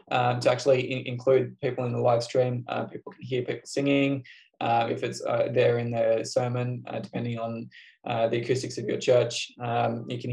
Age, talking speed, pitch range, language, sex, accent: 20-39, 210 wpm, 125-140 Hz, English, male, Australian